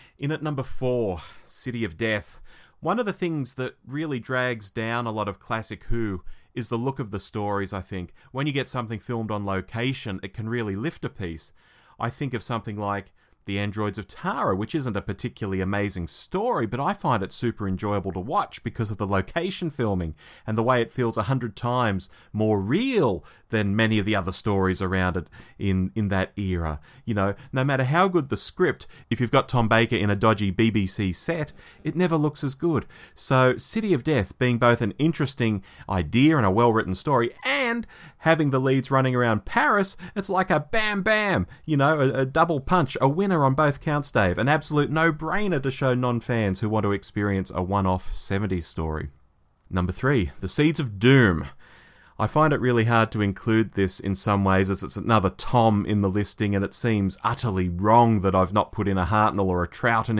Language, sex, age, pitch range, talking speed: English, male, 30-49, 100-135 Hz, 205 wpm